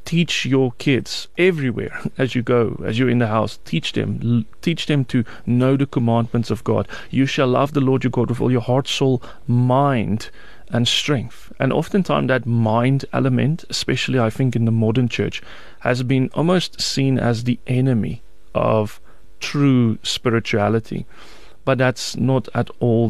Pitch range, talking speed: 115-135 Hz, 165 wpm